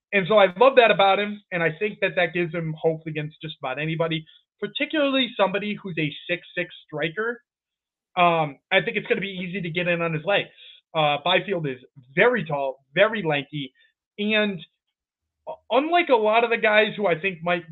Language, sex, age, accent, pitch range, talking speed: English, male, 20-39, American, 160-210 Hz, 195 wpm